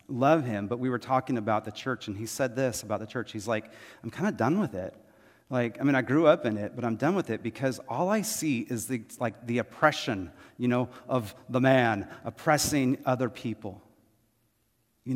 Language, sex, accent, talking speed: English, male, American, 220 wpm